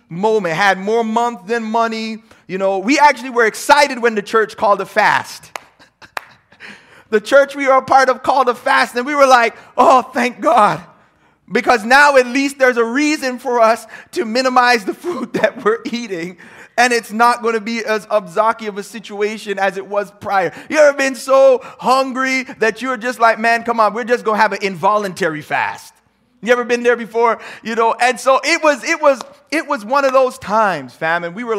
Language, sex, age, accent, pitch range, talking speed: English, male, 30-49, American, 200-250 Hz, 205 wpm